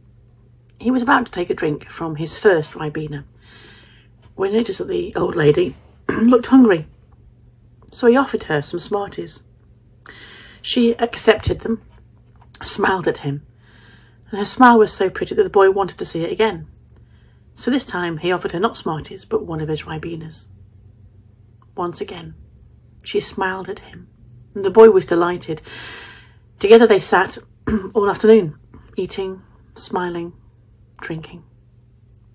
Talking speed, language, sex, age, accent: 145 wpm, English, female, 40-59, British